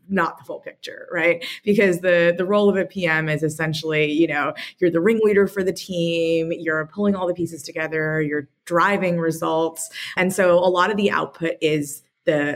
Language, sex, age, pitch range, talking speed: English, female, 20-39, 160-190 Hz, 190 wpm